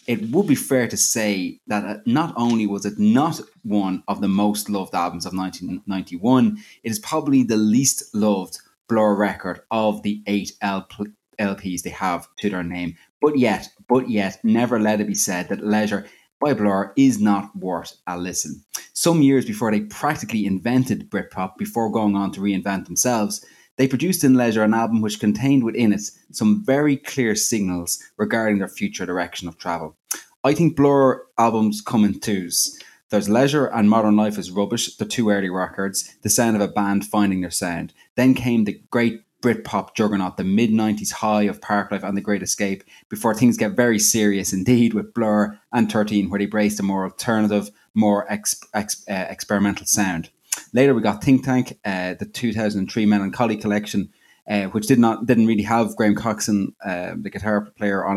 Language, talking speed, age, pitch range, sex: English, 180 wpm, 20-39, 100-115 Hz, male